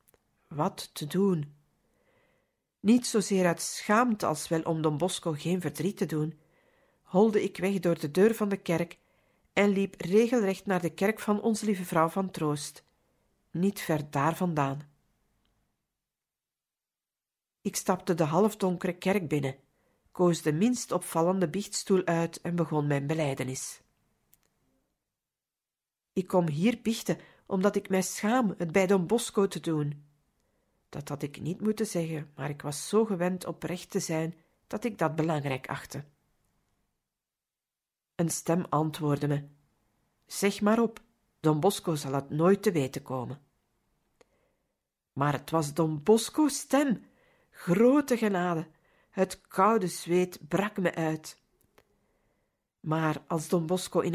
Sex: female